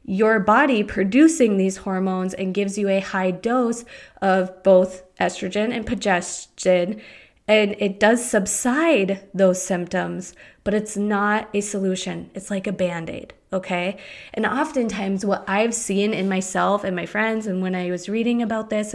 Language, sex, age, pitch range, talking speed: English, female, 20-39, 190-230 Hz, 155 wpm